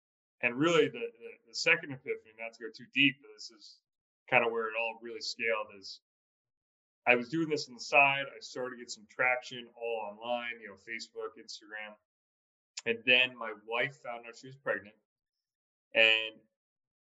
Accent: American